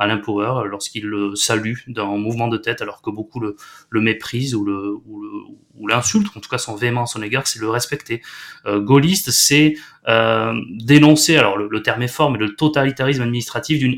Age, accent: 20-39, French